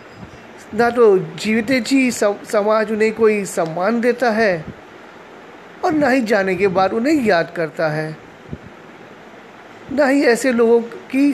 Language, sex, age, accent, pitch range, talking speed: Hindi, male, 20-39, native, 200-250 Hz, 130 wpm